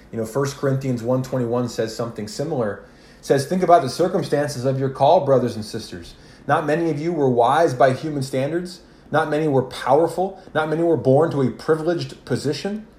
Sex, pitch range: male, 130-165 Hz